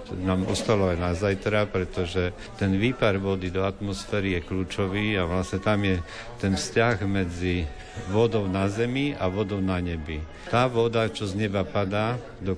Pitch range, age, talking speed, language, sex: 95-105 Hz, 50-69, 160 wpm, Slovak, male